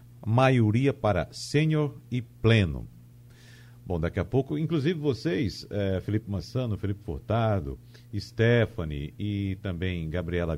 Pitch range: 105-130 Hz